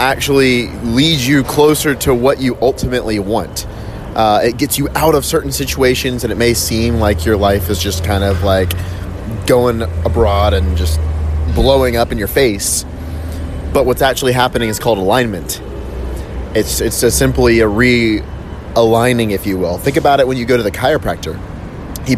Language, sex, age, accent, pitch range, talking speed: English, male, 30-49, American, 90-120 Hz, 170 wpm